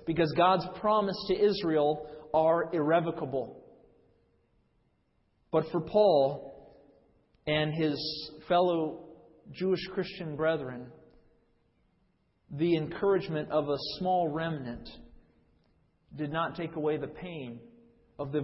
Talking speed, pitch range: 100 wpm, 135-165 Hz